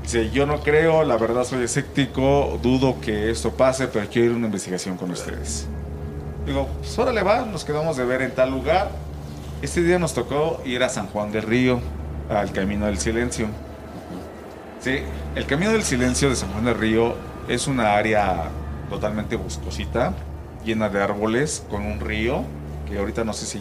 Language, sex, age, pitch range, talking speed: Spanish, male, 40-59, 75-125 Hz, 185 wpm